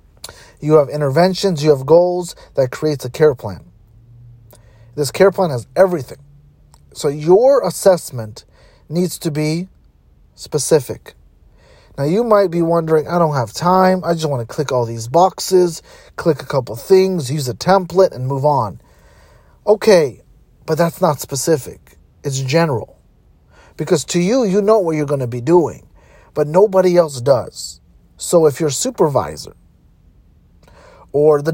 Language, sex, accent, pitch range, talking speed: English, male, American, 135-180 Hz, 150 wpm